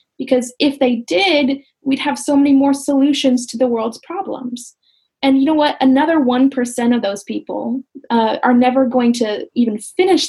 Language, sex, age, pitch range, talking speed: English, female, 10-29, 230-275 Hz, 175 wpm